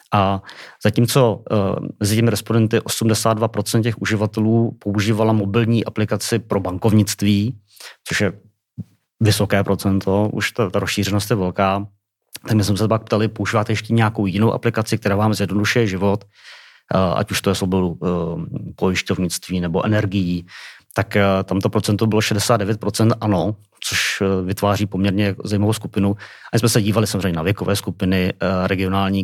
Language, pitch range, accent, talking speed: Czech, 95-110 Hz, native, 135 wpm